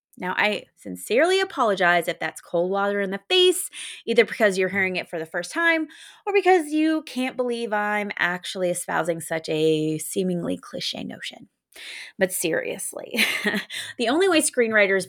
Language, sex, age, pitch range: English, female, 20-39, 190-290 Hz